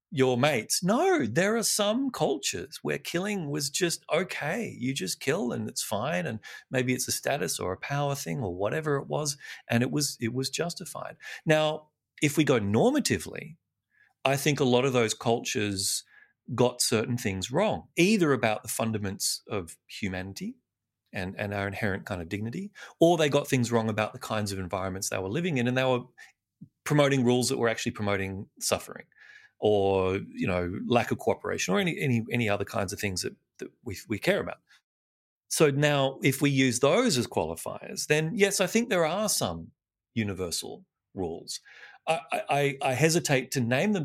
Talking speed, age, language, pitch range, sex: 185 wpm, 30-49, English, 105-150 Hz, male